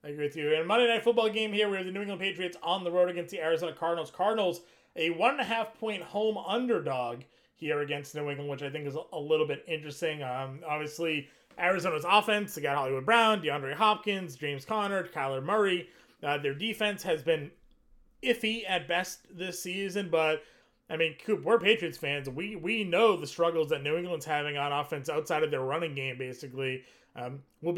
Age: 30-49